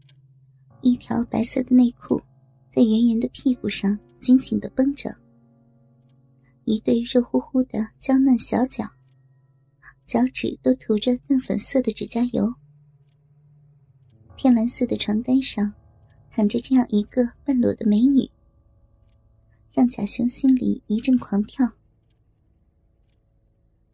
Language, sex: Chinese, male